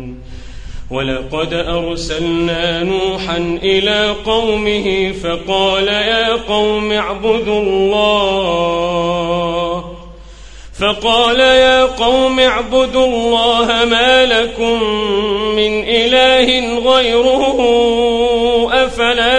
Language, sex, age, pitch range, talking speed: Arabic, male, 40-59, 215-260 Hz, 65 wpm